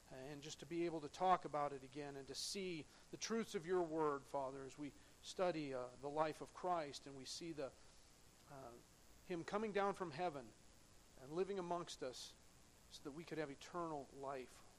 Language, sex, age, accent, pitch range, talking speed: English, male, 40-59, American, 135-175 Hz, 195 wpm